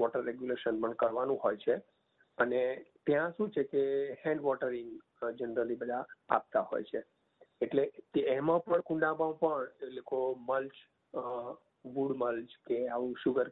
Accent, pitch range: native, 125-175 Hz